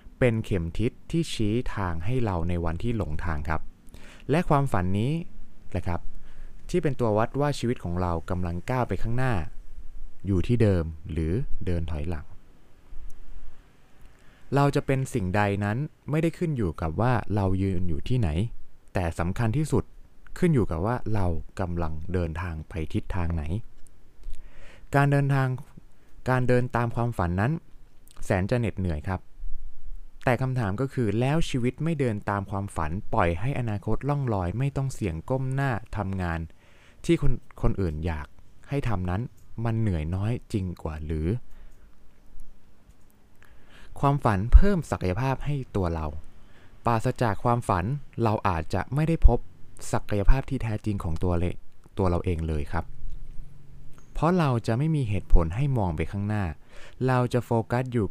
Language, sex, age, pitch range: Thai, male, 20-39, 90-125 Hz